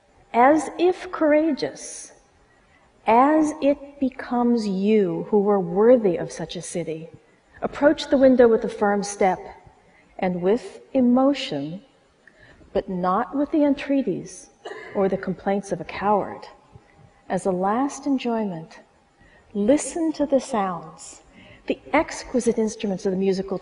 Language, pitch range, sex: Chinese, 180-260 Hz, female